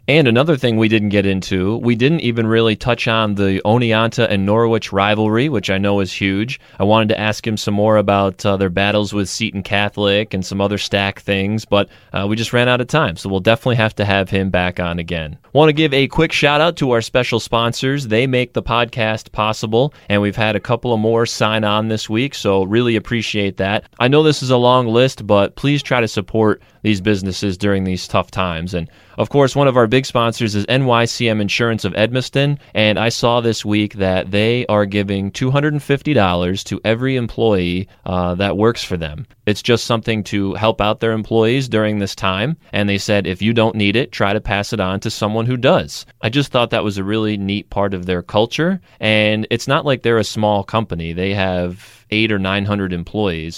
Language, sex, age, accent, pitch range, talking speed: English, male, 20-39, American, 100-120 Hz, 220 wpm